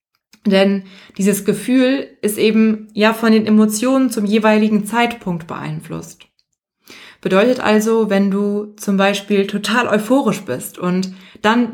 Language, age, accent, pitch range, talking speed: German, 20-39, German, 190-225 Hz, 125 wpm